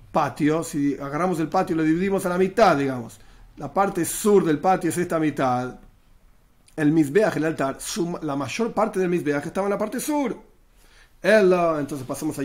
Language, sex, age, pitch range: Spanish, male, 40-59, 140-185 Hz